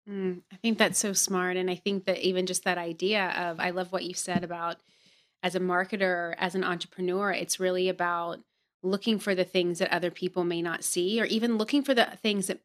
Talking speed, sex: 225 wpm, female